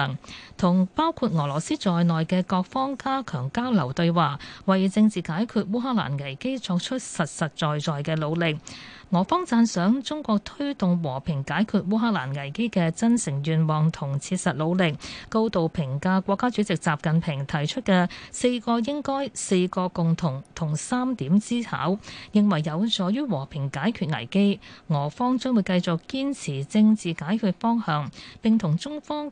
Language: Chinese